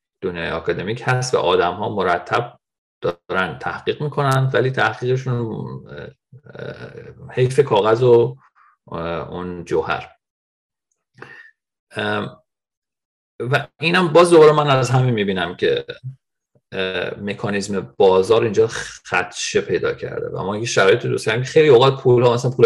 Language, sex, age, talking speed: Persian, male, 40-59, 115 wpm